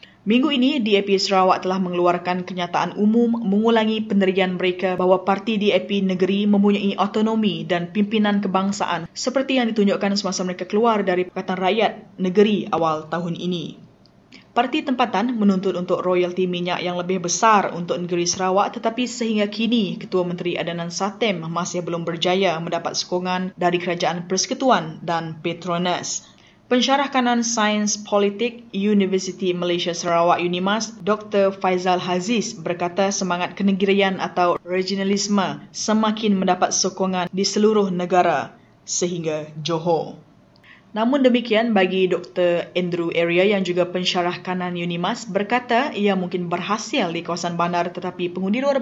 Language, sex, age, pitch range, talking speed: English, female, 20-39, 180-210 Hz, 130 wpm